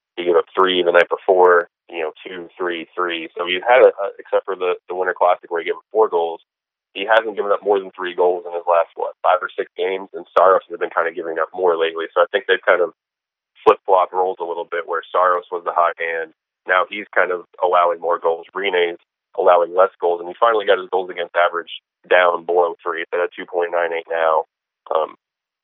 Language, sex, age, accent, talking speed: English, male, 20-39, American, 230 wpm